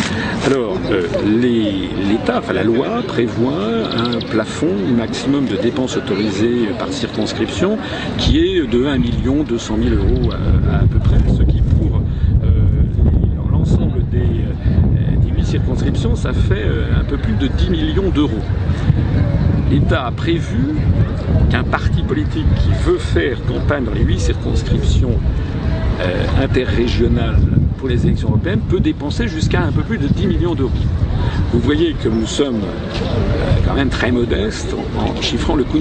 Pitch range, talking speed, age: 95-115 Hz, 150 wpm, 50-69